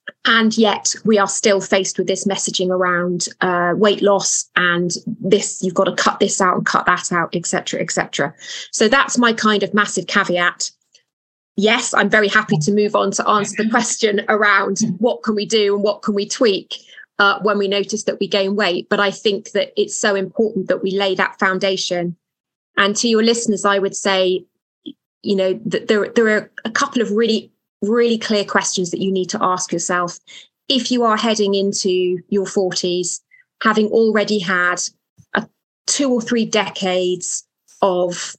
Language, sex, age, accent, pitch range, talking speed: English, female, 20-39, British, 185-215 Hz, 185 wpm